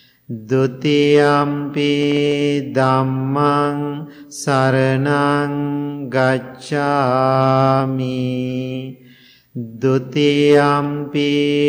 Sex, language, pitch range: male, English, 130-145 Hz